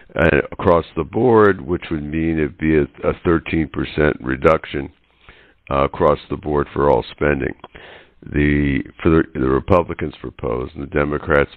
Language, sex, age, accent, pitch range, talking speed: English, male, 60-79, American, 75-90 Hz, 155 wpm